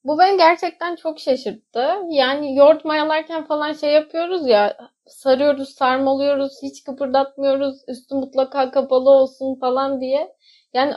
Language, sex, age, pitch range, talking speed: Turkish, female, 10-29, 235-310 Hz, 125 wpm